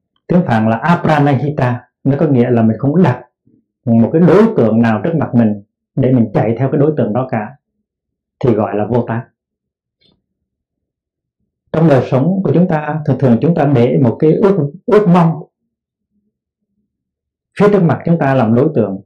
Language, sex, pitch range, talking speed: Vietnamese, male, 120-170 Hz, 180 wpm